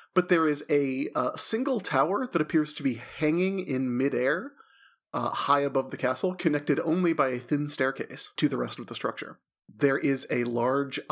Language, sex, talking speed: English, male, 190 wpm